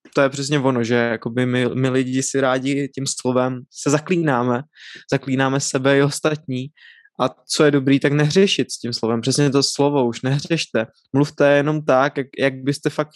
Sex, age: male, 20-39